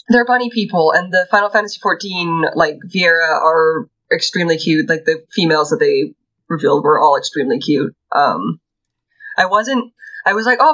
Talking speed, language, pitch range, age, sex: 170 wpm, English, 155-210 Hz, 20-39, female